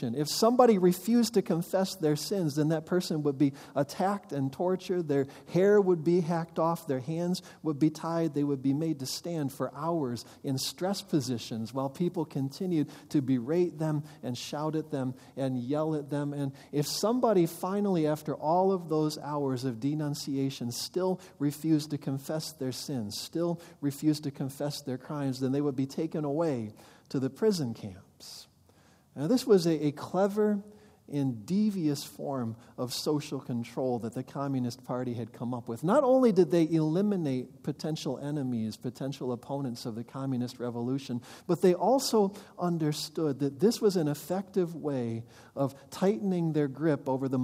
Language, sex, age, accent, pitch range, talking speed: English, male, 40-59, American, 135-175 Hz, 170 wpm